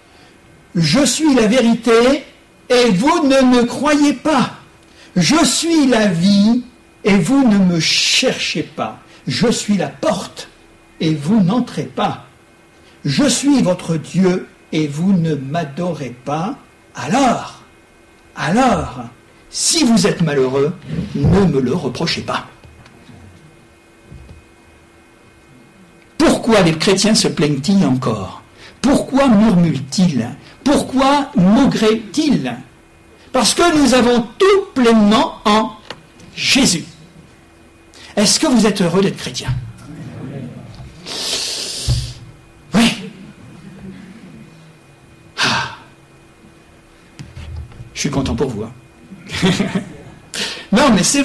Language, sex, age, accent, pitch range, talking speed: French, male, 60-79, French, 160-250 Hz, 100 wpm